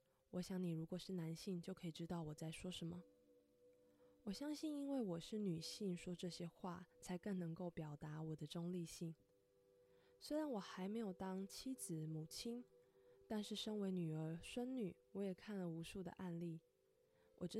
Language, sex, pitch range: Chinese, female, 155-205 Hz